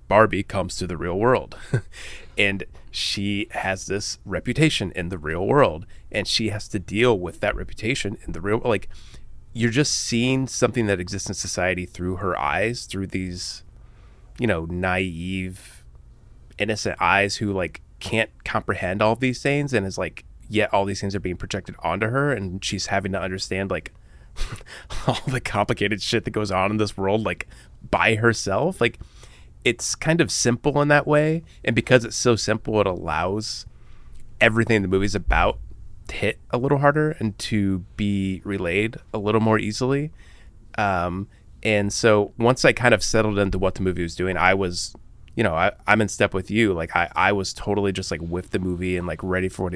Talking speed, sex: 185 wpm, male